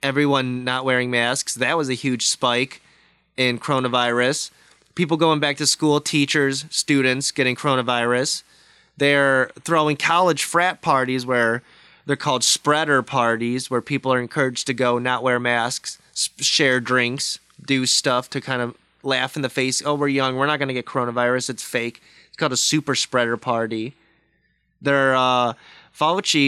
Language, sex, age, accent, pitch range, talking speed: English, male, 20-39, American, 120-145 Hz, 160 wpm